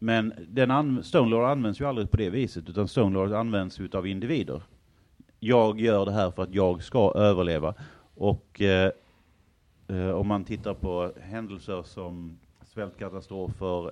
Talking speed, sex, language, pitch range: 135 wpm, male, Swedish, 90-115 Hz